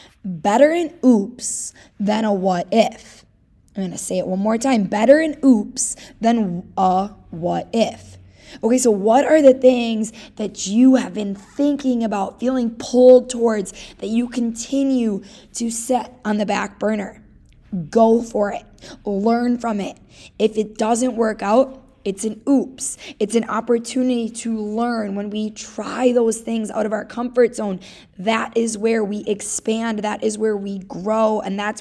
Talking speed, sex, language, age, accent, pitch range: 165 wpm, female, English, 20-39, American, 210-250 Hz